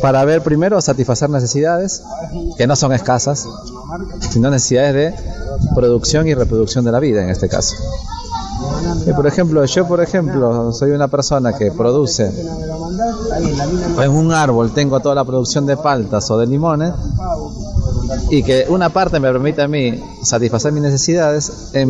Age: 30-49